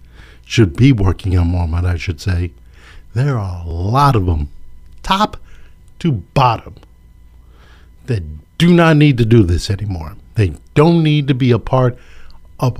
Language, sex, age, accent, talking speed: English, male, 50-69, American, 155 wpm